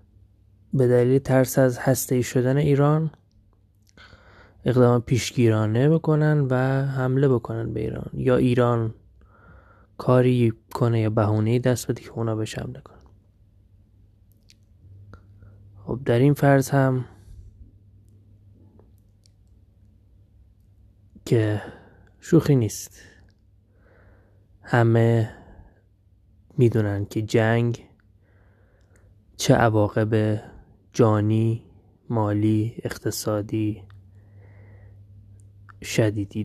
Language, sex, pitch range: Persian, male, 100-120 Hz